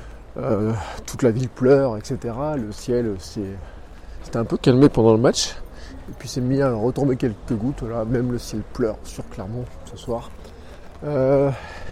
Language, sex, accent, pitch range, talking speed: French, male, French, 110-130 Hz, 165 wpm